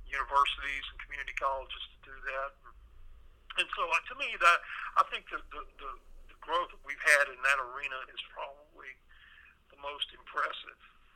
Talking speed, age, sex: 165 wpm, 50-69, male